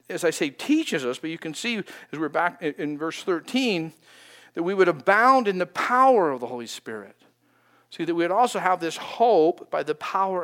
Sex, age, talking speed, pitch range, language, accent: male, 50-69, 220 wpm, 150-205 Hz, English, American